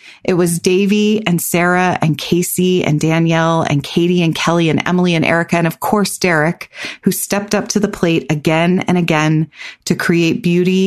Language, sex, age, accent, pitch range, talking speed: English, female, 30-49, American, 155-195 Hz, 180 wpm